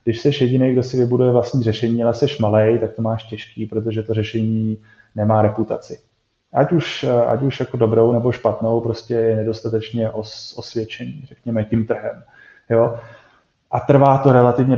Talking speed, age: 165 wpm, 20-39